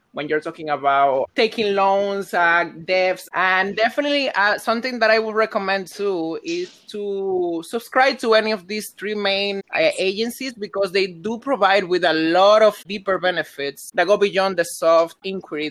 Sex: male